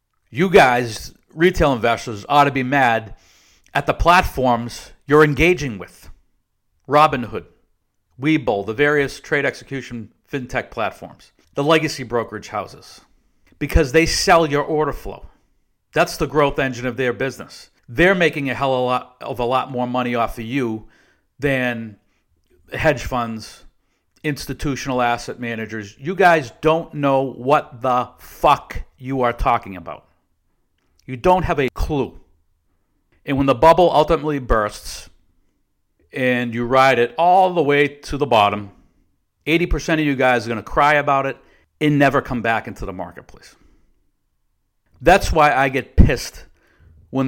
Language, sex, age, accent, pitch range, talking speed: English, male, 50-69, American, 115-150 Hz, 145 wpm